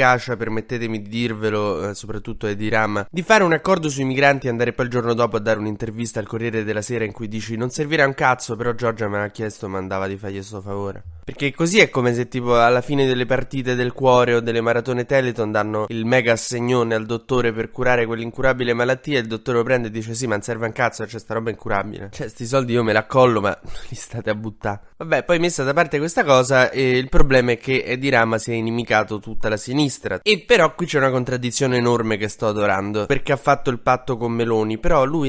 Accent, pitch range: native, 110-140 Hz